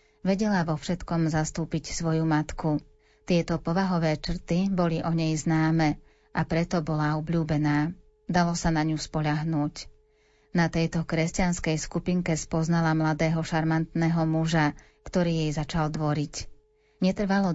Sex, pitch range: female, 155-175 Hz